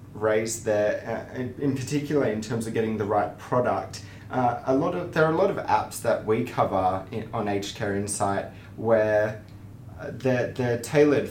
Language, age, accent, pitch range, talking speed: English, 20-39, Australian, 100-130 Hz, 185 wpm